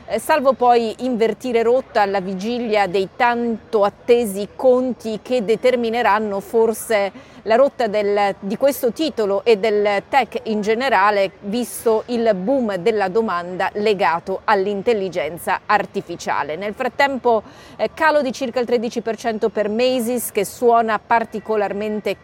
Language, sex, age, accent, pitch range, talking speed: Italian, female, 40-59, native, 195-235 Hz, 120 wpm